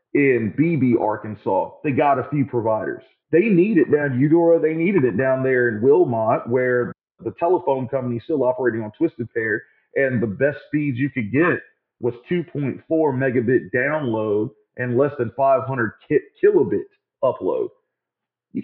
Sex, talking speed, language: male, 155 wpm, English